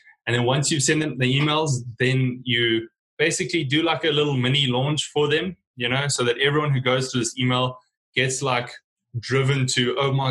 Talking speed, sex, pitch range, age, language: 205 wpm, male, 120-140 Hz, 20-39, English